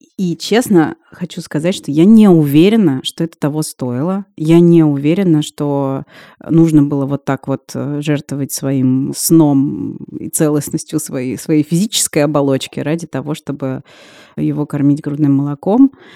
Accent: native